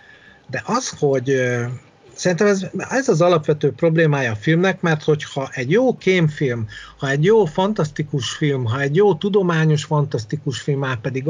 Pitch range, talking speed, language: 120-160 Hz, 155 wpm, Hungarian